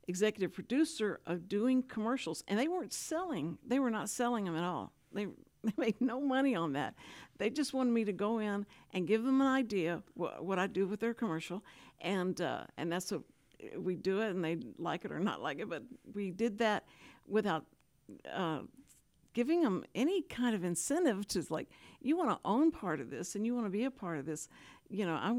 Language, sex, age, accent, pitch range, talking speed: English, female, 60-79, American, 185-250 Hz, 215 wpm